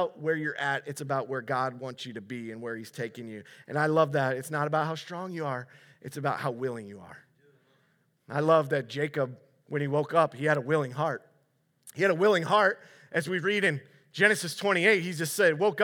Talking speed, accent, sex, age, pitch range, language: 230 wpm, American, male, 30-49, 140-180 Hz, English